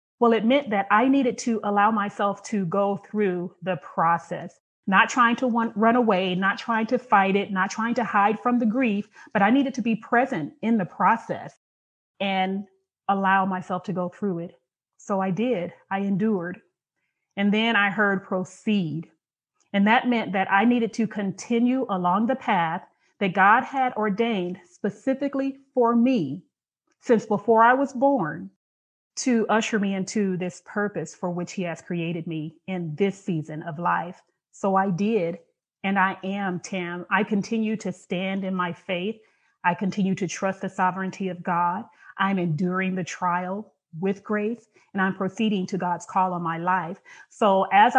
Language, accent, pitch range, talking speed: English, American, 180-220 Hz, 170 wpm